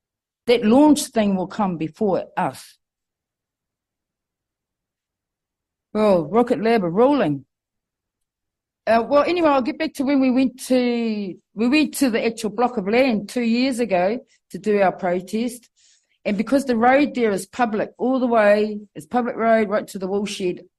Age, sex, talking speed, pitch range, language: 40-59, female, 160 wpm, 180-240 Hz, English